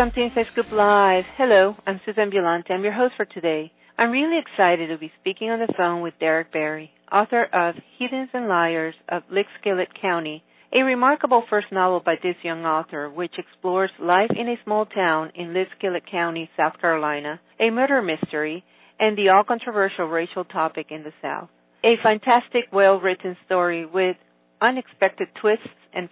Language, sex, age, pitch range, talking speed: English, female, 40-59, 165-220 Hz, 165 wpm